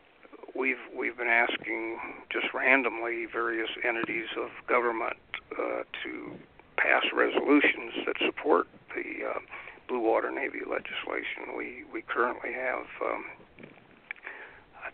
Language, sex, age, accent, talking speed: English, male, 60-79, American, 115 wpm